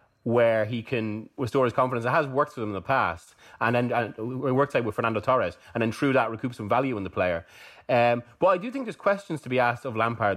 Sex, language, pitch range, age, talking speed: male, English, 105-130 Hz, 30-49, 260 wpm